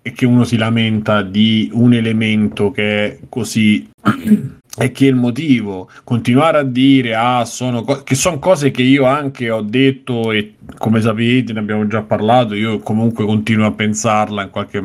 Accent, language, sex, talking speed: native, Italian, male, 180 wpm